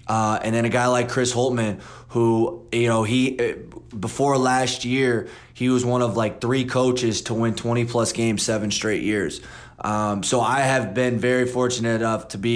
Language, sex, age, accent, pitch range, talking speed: English, male, 20-39, American, 110-120 Hz, 190 wpm